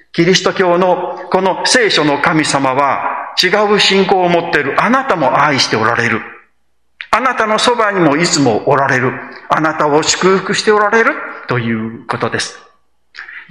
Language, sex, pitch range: Japanese, male, 150-230 Hz